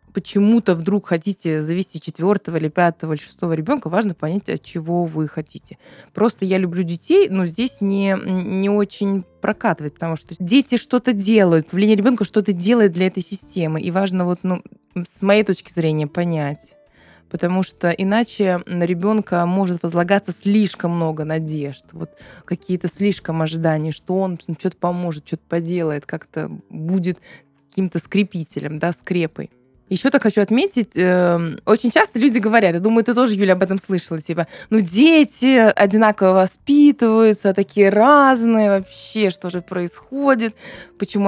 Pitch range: 170-215 Hz